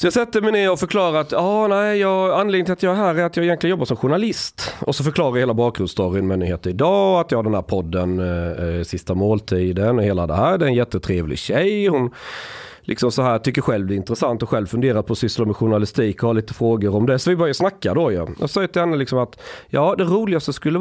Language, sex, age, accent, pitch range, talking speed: Swedish, male, 30-49, native, 100-165 Hz, 255 wpm